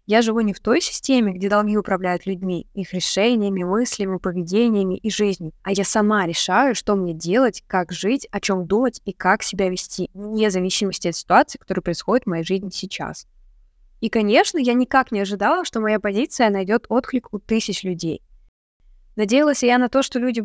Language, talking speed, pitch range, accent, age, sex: Russian, 180 wpm, 180-220 Hz, native, 20-39, female